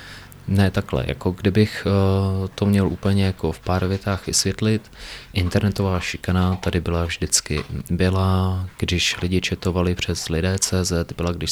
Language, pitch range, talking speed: Czech, 85-95 Hz, 130 wpm